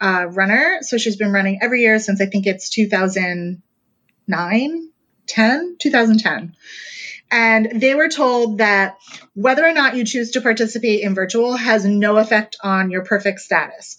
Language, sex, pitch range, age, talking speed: English, female, 200-255 Hz, 30-49, 155 wpm